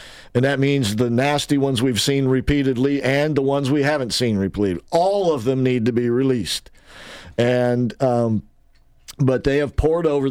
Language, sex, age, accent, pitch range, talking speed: English, male, 50-69, American, 105-135 Hz, 175 wpm